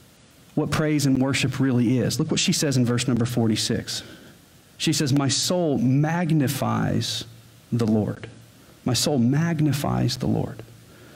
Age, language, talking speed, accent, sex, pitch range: 40-59, English, 140 wpm, American, male, 120-155 Hz